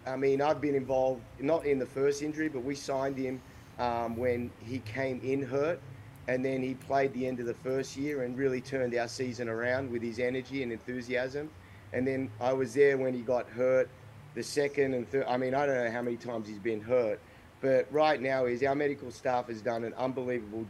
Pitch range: 120-135 Hz